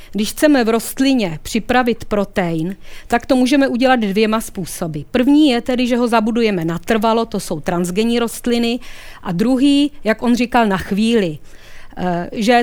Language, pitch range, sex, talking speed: Czech, 205-245 Hz, female, 145 wpm